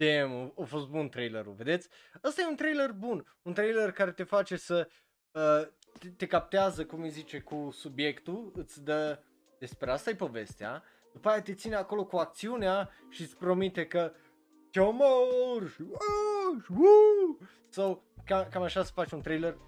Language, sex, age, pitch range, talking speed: Romanian, male, 20-39, 135-190 Hz, 155 wpm